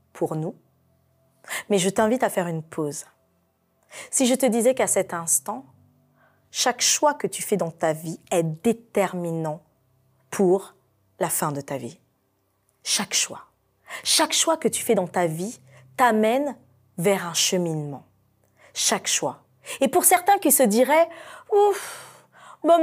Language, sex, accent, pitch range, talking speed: French, female, French, 190-295 Hz, 150 wpm